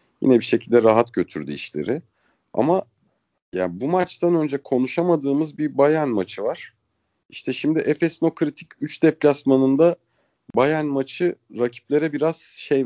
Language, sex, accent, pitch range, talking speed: Turkish, male, native, 115-150 Hz, 125 wpm